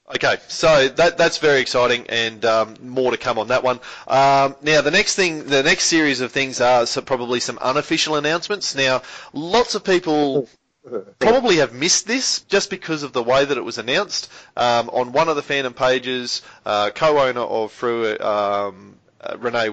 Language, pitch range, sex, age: English, 115-145 Hz, male, 30-49